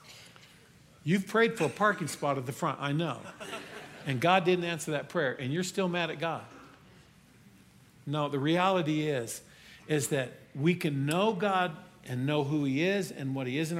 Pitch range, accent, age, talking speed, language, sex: 130-170 Hz, American, 50-69, 185 wpm, English, male